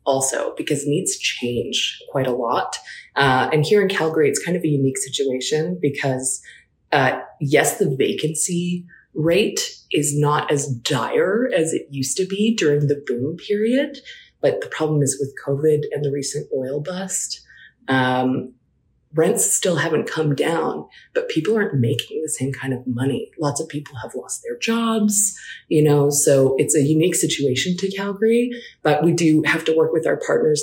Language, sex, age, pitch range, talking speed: English, female, 20-39, 140-215 Hz, 170 wpm